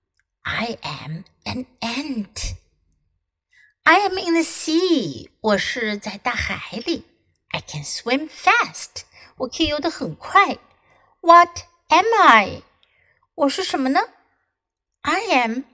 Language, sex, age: Chinese, female, 60-79